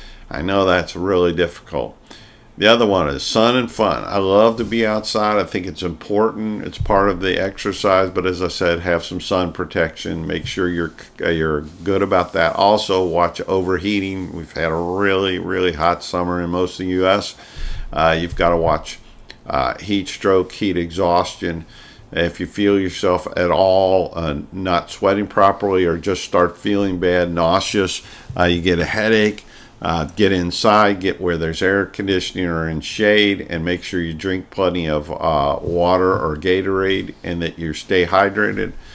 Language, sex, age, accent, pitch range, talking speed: English, male, 50-69, American, 85-100 Hz, 175 wpm